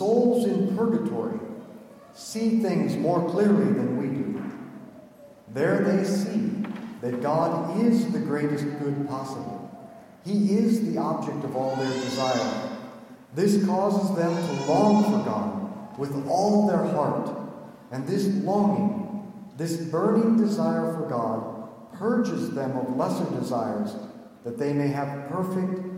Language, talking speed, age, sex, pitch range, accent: English, 130 wpm, 50-69, male, 150-215 Hz, American